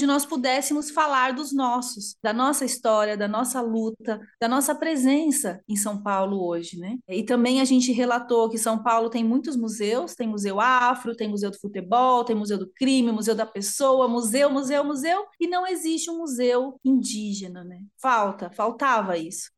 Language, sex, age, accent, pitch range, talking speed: Portuguese, female, 30-49, Brazilian, 220-270 Hz, 175 wpm